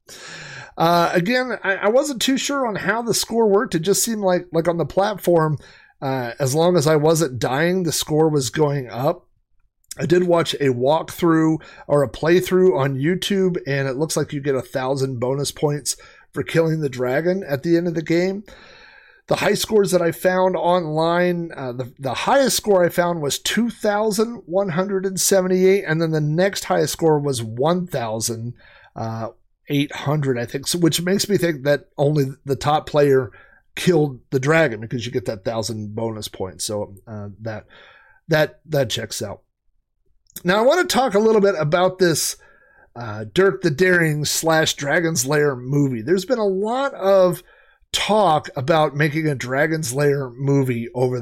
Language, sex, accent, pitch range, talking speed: English, male, American, 135-185 Hz, 180 wpm